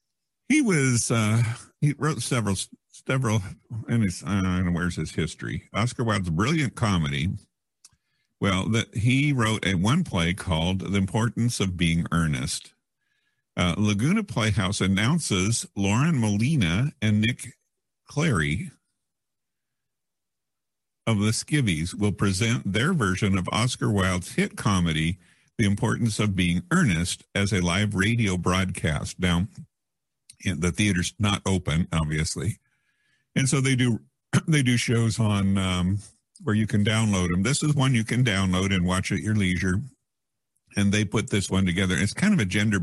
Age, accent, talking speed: 50-69, American, 145 wpm